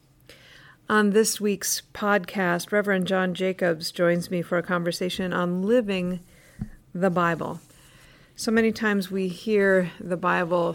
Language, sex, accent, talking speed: English, female, American, 130 wpm